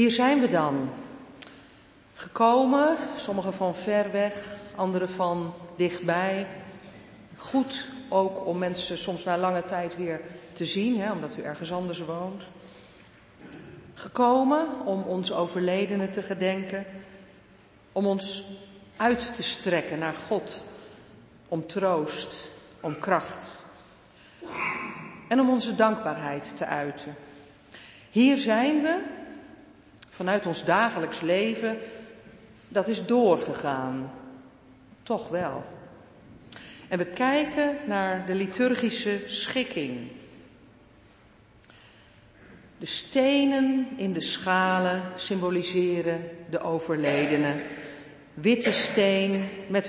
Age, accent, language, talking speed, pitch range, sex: 50-69, Dutch, Dutch, 95 wpm, 165-220 Hz, female